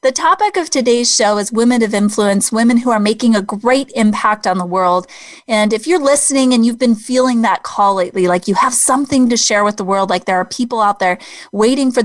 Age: 20-39